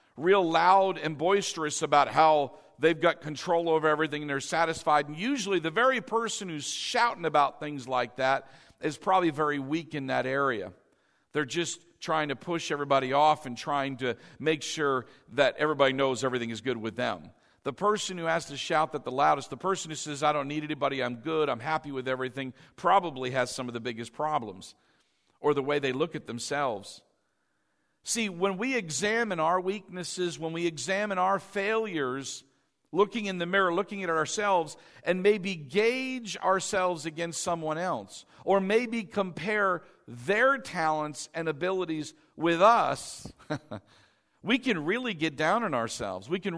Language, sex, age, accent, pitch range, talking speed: English, male, 50-69, American, 145-195 Hz, 170 wpm